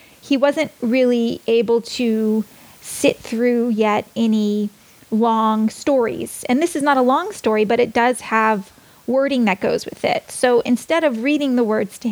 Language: English